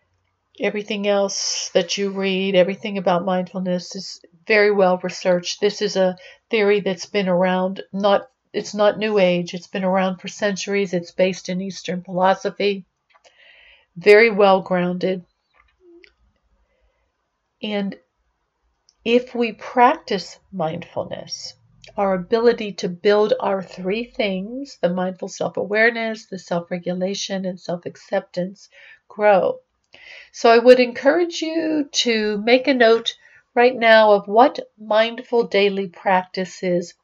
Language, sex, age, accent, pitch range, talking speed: English, female, 50-69, American, 190-235 Hz, 120 wpm